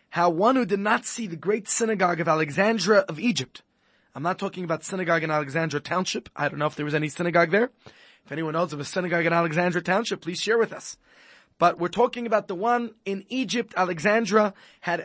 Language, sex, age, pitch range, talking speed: English, male, 20-39, 170-220 Hz, 210 wpm